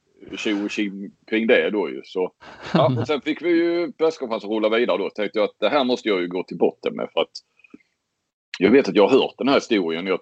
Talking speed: 240 wpm